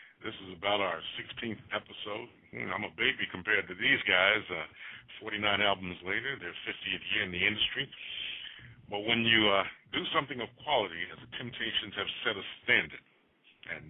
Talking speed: 170 wpm